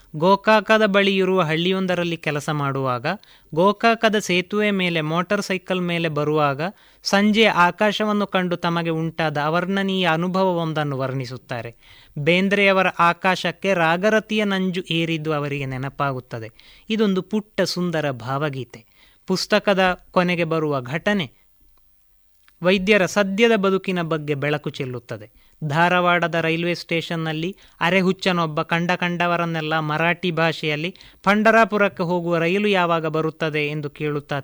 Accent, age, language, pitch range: native, 20-39, Kannada, 155-195 Hz